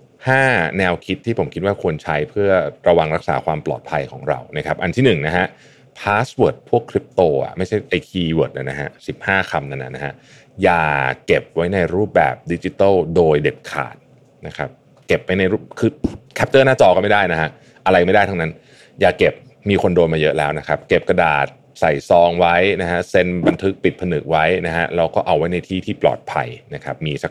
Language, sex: Thai, male